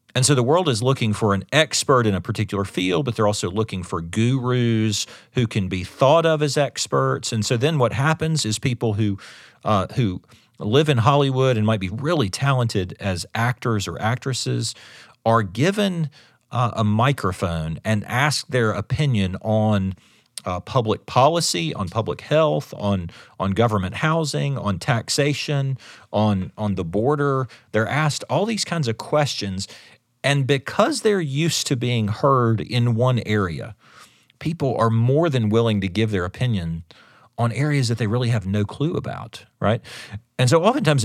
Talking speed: 165 wpm